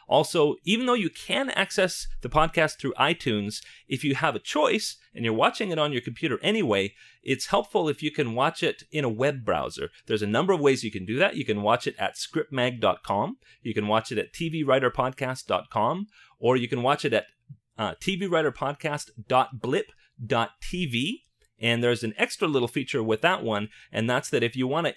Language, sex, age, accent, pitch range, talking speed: English, male, 30-49, American, 110-150 Hz, 185 wpm